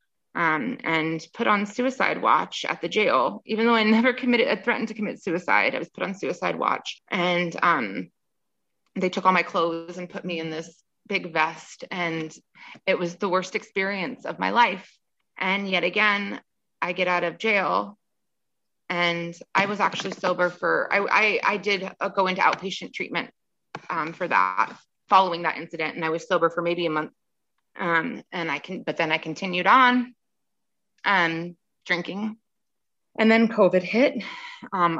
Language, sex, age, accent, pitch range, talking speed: English, female, 20-39, American, 160-195 Hz, 175 wpm